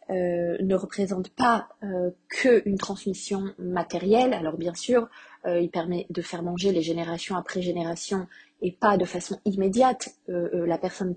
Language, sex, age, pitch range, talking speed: French, female, 20-39, 175-210 Hz, 160 wpm